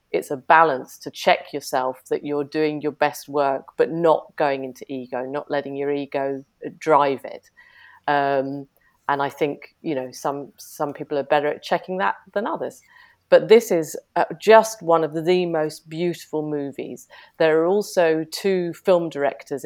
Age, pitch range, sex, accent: 40-59, 140-165 Hz, female, British